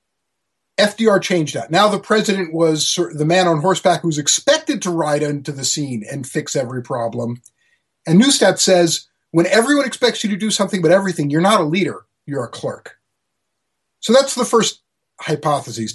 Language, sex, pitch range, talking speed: English, male, 145-190 Hz, 175 wpm